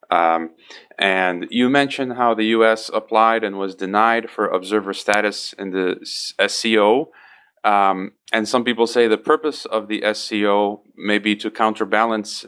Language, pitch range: English, 105-125 Hz